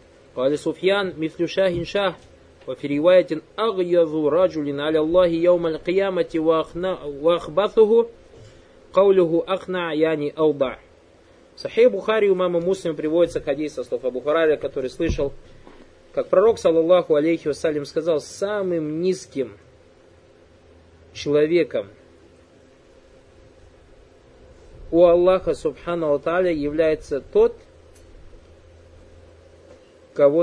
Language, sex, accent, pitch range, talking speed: Russian, male, native, 140-190 Hz, 55 wpm